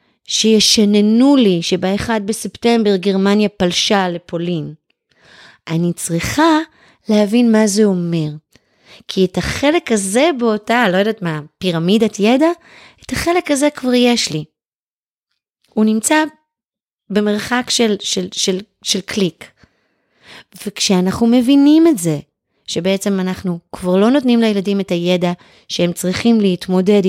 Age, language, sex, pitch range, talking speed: 30-49, Hebrew, female, 175-220 Hz, 115 wpm